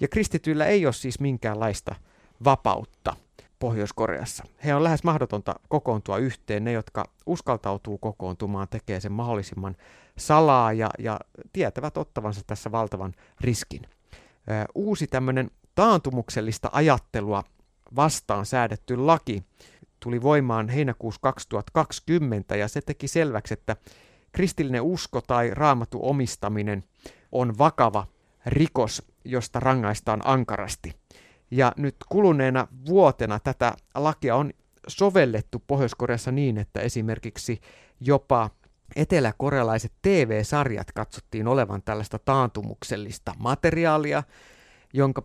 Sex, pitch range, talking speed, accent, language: male, 105-135 Hz, 100 wpm, native, Finnish